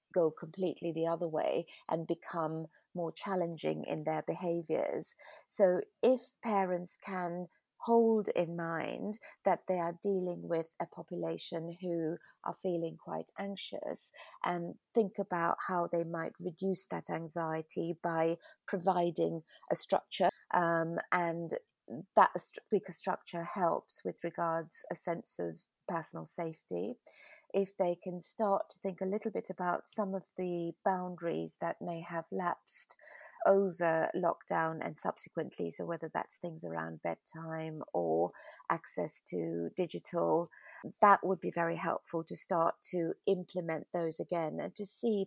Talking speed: 135 wpm